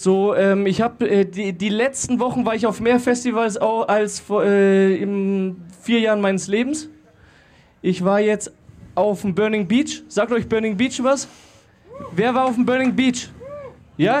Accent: German